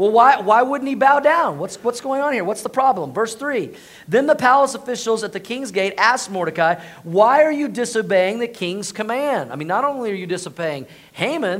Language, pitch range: English, 190-245 Hz